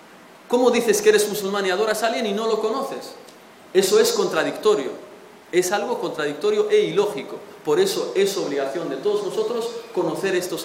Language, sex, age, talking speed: Spanish, male, 30-49, 170 wpm